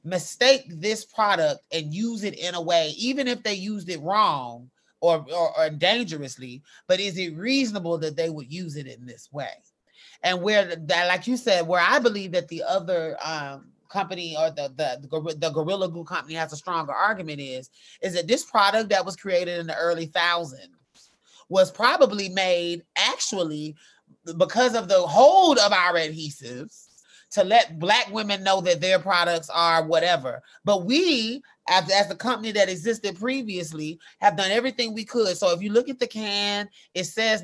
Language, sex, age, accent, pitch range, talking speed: English, male, 30-49, American, 170-220 Hz, 180 wpm